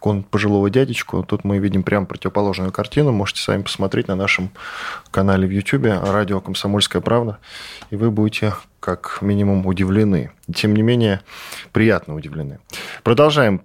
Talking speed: 135 wpm